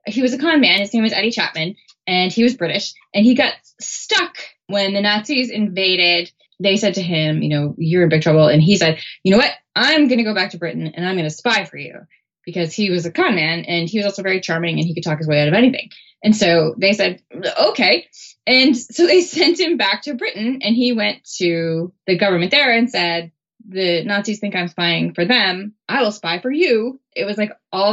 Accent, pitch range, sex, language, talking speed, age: American, 170-225 Hz, female, English, 240 wpm, 20-39